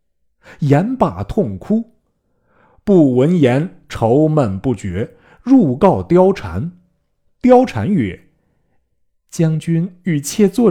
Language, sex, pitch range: Chinese, male, 95-145 Hz